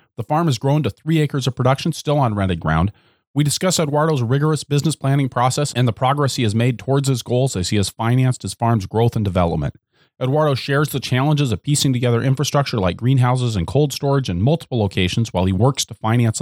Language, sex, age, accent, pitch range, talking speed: English, male, 30-49, American, 105-140 Hz, 215 wpm